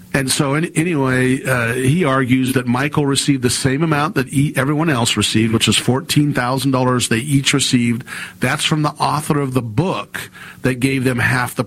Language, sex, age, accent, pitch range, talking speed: English, male, 50-69, American, 120-140 Hz, 180 wpm